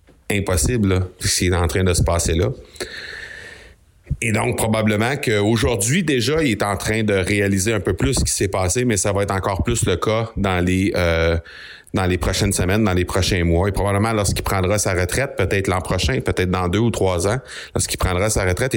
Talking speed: 200 wpm